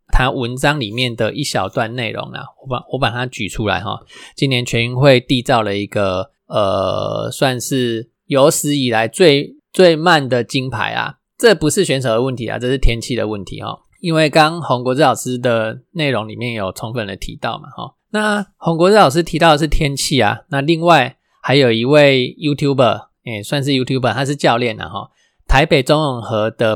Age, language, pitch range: 20-39, Chinese, 115-145 Hz